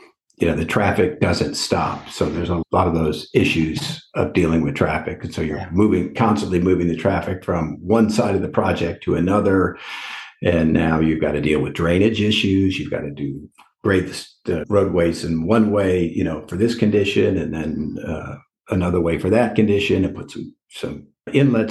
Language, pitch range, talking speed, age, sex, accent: English, 85-110 Hz, 195 wpm, 50-69, male, American